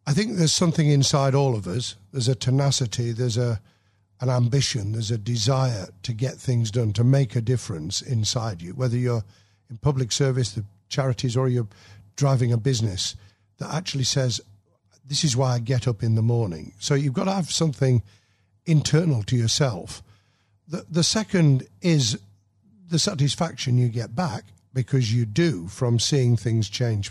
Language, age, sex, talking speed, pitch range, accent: English, 50-69, male, 170 wpm, 110-140 Hz, British